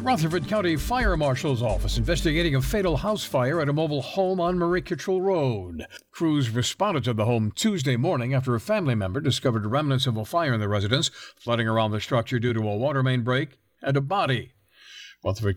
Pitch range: 115-160 Hz